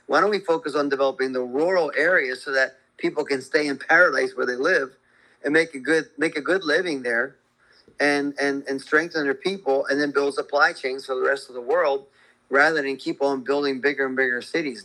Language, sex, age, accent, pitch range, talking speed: English, male, 40-59, American, 135-160 Hz, 220 wpm